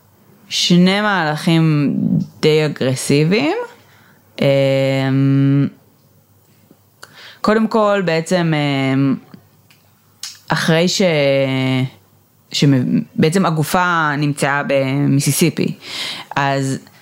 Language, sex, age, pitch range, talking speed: Hebrew, female, 20-39, 135-175 Hz, 50 wpm